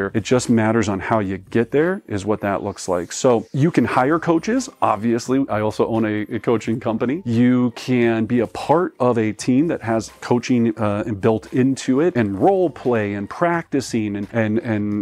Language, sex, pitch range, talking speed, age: English, male, 110-135 Hz, 195 wpm, 30-49